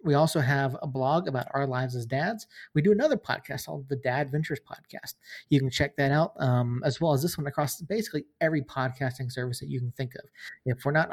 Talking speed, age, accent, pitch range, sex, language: 230 wpm, 30-49, American, 130-160 Hz, male, English